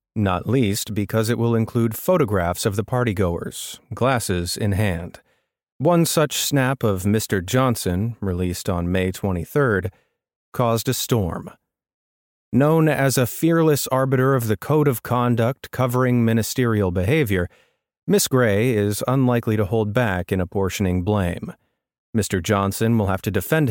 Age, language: 30-49, English